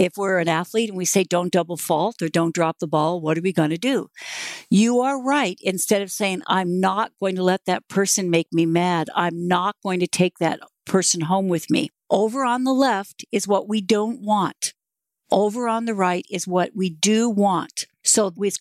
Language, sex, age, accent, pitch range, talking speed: English, female, 50-69, American, 180-225 Hz, 215 wpm